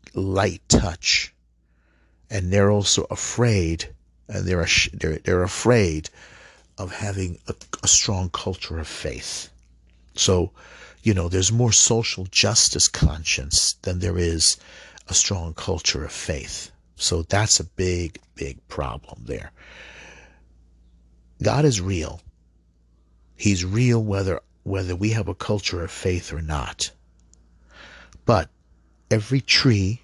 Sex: male